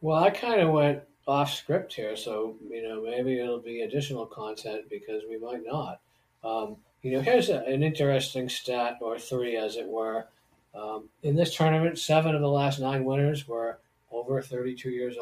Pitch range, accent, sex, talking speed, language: 120-150 Hz, American, male, 185 wpm, English